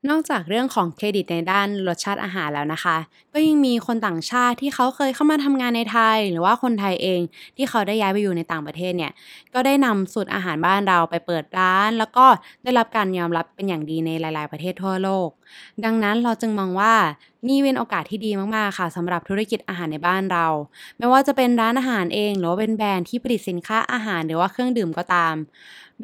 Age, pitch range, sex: 20-39, 175-230 Hz, female